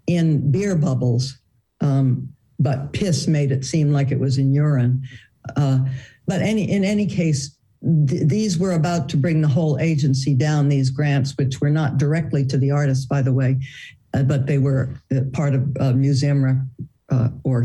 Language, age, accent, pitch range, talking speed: English, 60-79, American, 135-155 Hz, 180 wpm